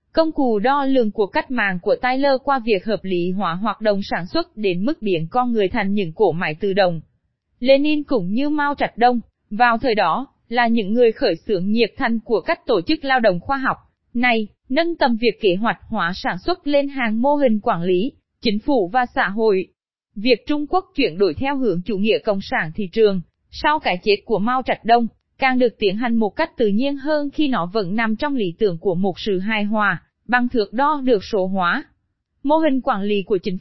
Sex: female